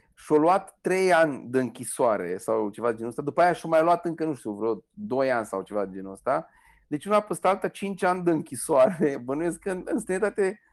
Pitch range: 135-185 Hz